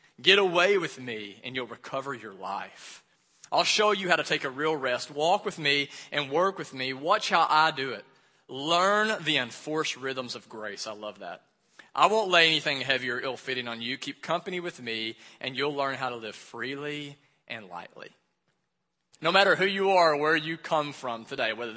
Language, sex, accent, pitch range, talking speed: English, male, American, 140-190 Hz, 200 wpm